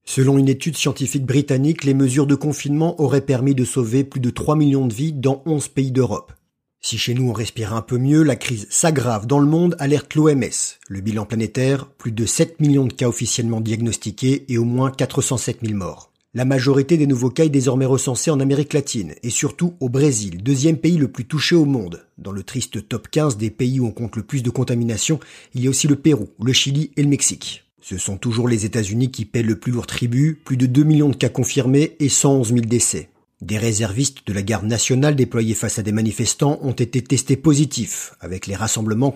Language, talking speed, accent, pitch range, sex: French, 220 wpm, French, 115-145 Hz, male